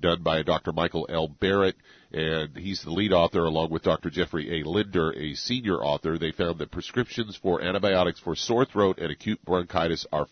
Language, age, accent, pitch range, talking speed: English, 50-69, American, 80-95 Hz, 190 wpm